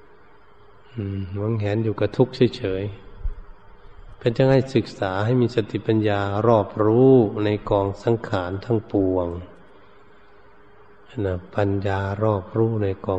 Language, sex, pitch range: Thai, male, 100-125 Hz